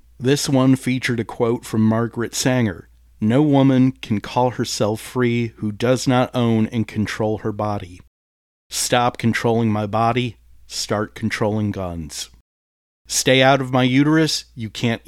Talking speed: 145 wpm